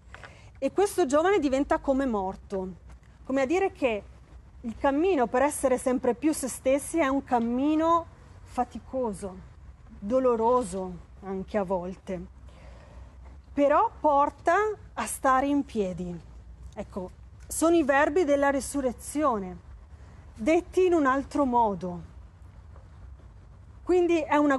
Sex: female